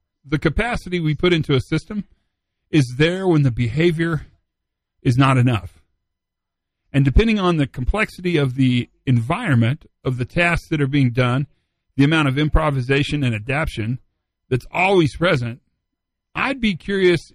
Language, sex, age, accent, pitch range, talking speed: English, male, 40-59, American, 115-170 Hz, 145 wpm